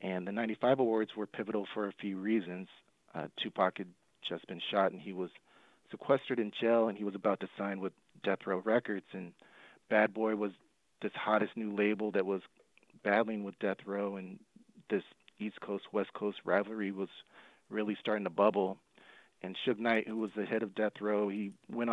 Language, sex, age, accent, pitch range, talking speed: English, male, 40-59, American, 100-110 Hz, 195 wpm